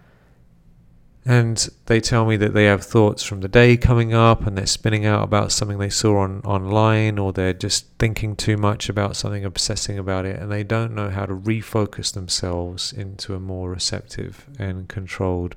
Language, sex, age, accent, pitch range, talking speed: English, male, 40-59, British, 95-115 Hz, 185 wpm